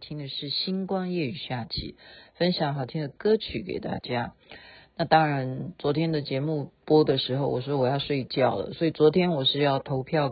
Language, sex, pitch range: Chinese, female, 150-215 Hz